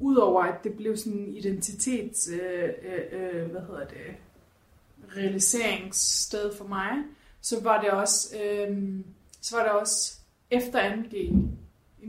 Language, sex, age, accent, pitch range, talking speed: Danish, female, 30-49, native, 190-225 Hz, 130 wpm